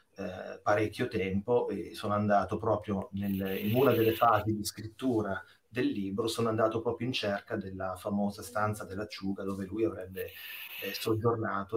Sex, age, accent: male, 30-49, native